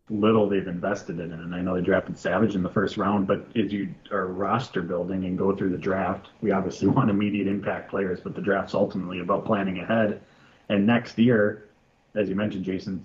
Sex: male